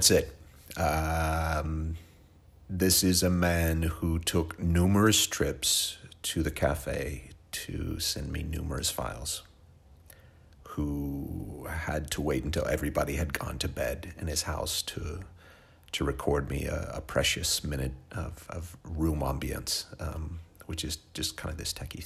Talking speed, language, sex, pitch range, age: 140 wpm, English, male, 75-90 Hz, 40-59